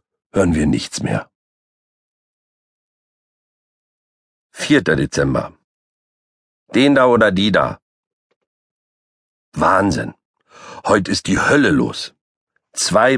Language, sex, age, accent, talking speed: German, male, 50-69, German, 80 wpm